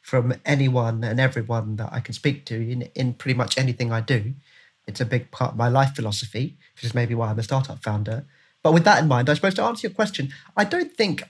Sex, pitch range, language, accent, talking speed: male, 120-150 Hz, English, British, 245 wpm